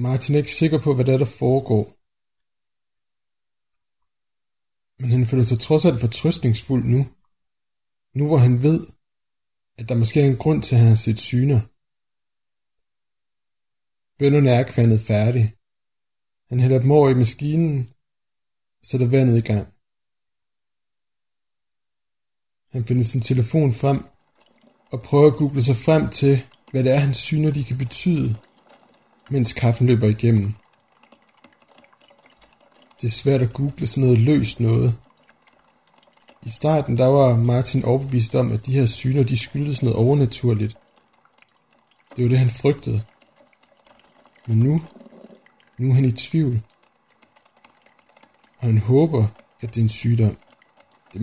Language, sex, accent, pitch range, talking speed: Danish, male, native, 115-150 Hz, 135 wpm